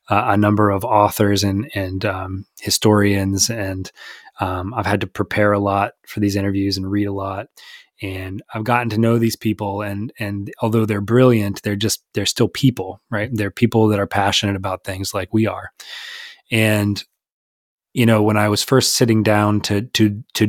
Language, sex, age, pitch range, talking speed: English, male, 20-39, 100-110 Hz, 185 wpm